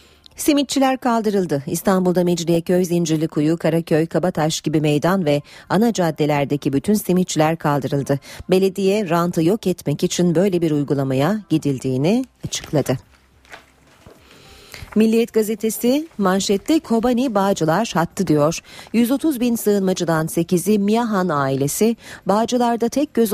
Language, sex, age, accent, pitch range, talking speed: Turkish, female, 40-59, native, 155-210 Hz, 110 wpm